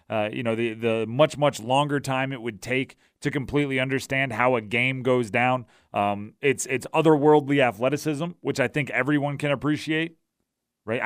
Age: 30-49